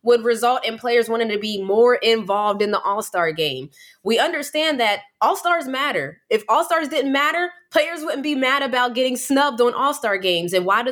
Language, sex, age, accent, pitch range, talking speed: English, female, 20-39, American, 215-280 Hz, 190 wpm